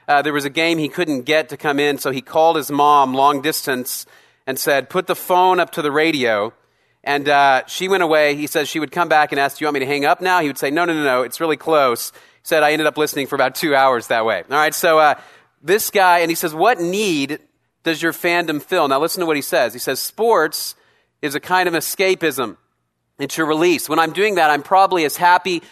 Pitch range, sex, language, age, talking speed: 140-175 Hz, male, English, 40-59, 255 wpm